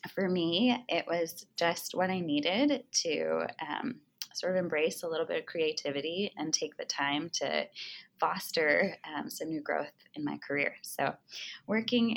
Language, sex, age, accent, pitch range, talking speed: English, female, 20-39, American, 155-215 Hz, 165 wpm